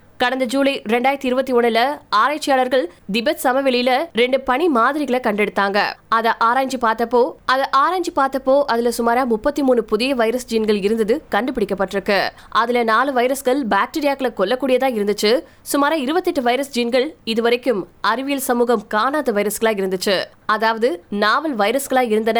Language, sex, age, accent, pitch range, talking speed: Tamil, female, 20-39, native, 225-275 Hz, 50 wpm